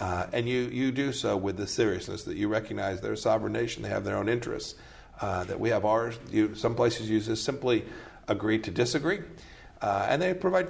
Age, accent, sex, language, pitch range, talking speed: 50-69, American, male, English, 95-120 Hz, 205 wpm